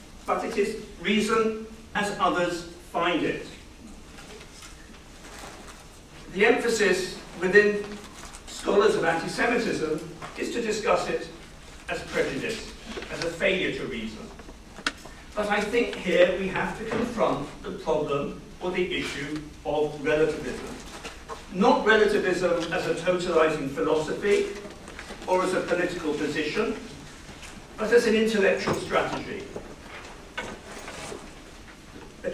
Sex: male